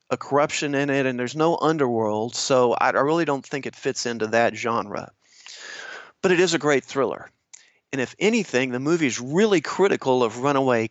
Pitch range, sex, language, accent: 120-150 Hz, male, English, American